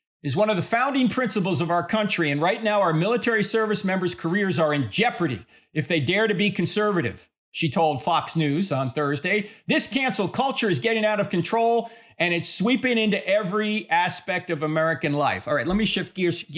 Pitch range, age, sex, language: 160-210 Hz, 40-59, male, English